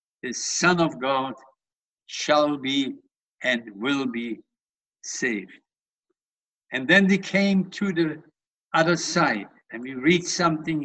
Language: English